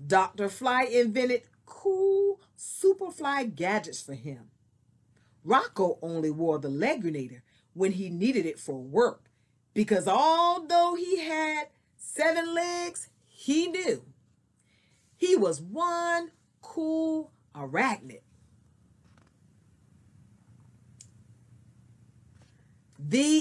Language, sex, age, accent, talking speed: English, female, 40-59, American, 85 wpm